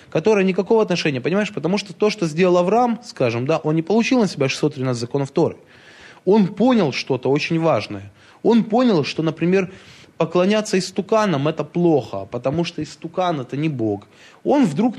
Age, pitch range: 20-39, 140-195 Hz